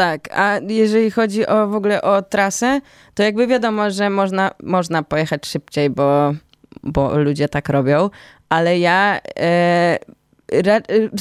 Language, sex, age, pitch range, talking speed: Polish, female, 20-39, 160-200 Hz, 140 wpm